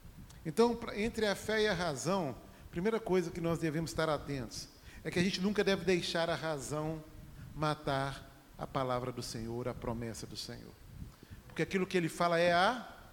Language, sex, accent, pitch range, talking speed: Portuguese, male, Brazilian, 145-225 Hz, 185 wpm